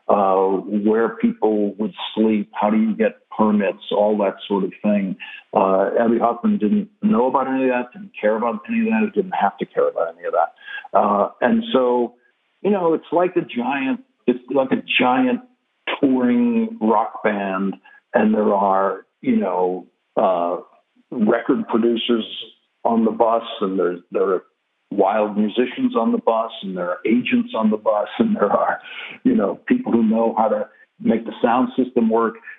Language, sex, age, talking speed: English, male, 60-79, 175 wpm